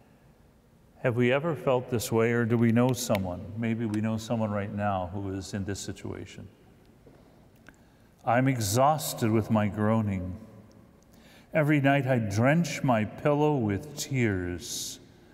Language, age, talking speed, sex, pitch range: English, 50-69, 135 wpm, male, 105-125 Hz